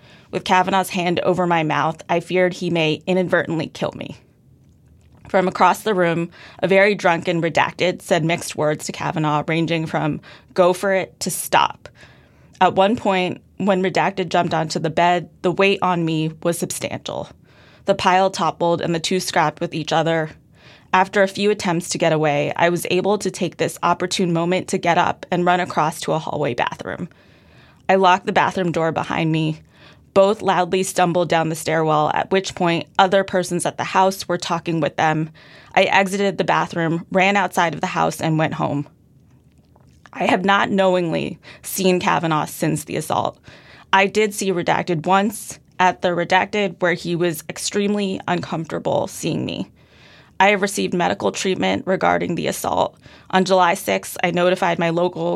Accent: American